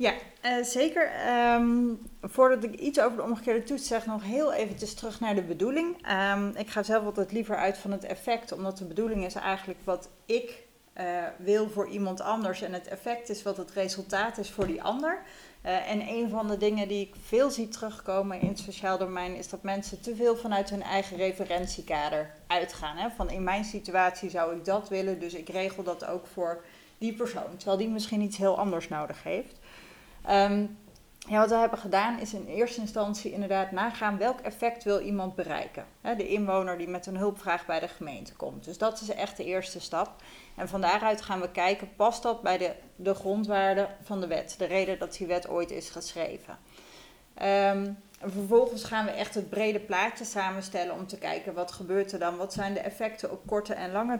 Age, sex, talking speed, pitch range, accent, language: 30-49, female, 195 wpm, 185-220 Hz, Dutch, Dutch